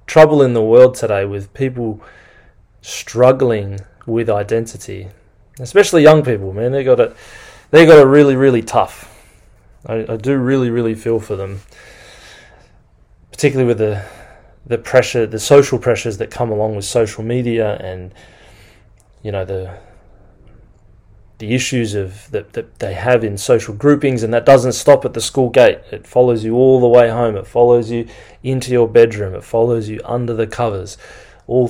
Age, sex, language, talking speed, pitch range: 20-39, male, English, 165 wpm, 105-125 Hz